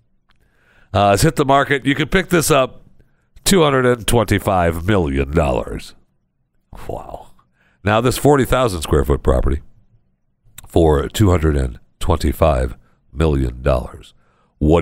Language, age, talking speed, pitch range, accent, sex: English, 60-79, 85 wpm, 75-115 Hz, American, male